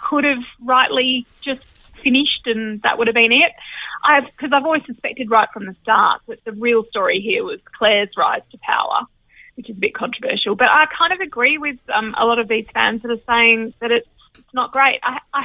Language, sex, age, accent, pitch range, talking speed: English, female, 30-49, Australian, 225-290 Hz, 220 wpm